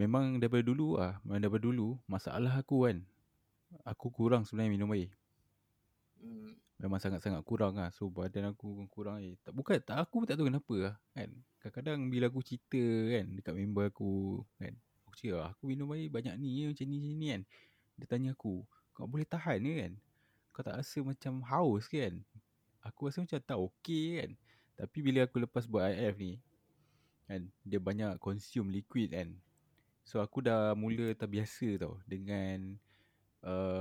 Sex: male